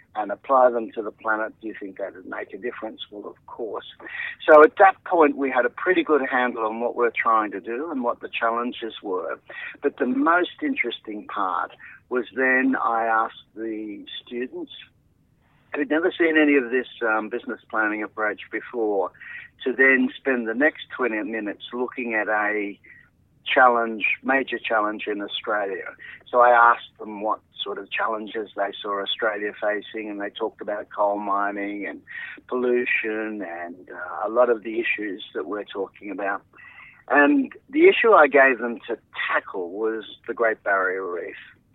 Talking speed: 170 wpm